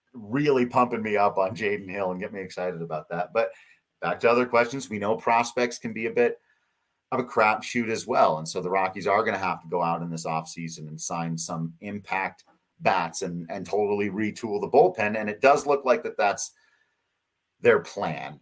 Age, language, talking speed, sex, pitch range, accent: 30-49, English, 215 wpm, male, 90-130 Hz, American